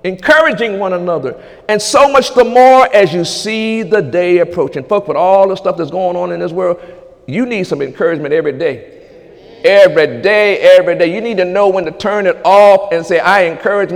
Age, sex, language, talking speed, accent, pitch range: 50-69, male, English, 205 wpm, American, 170-220 Hz